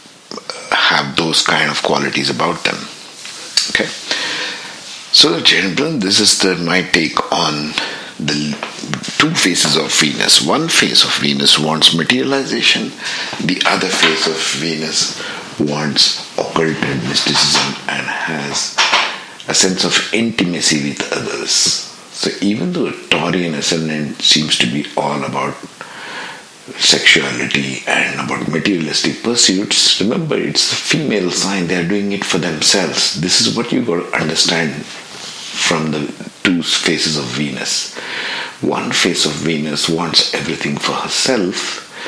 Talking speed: 130 wpm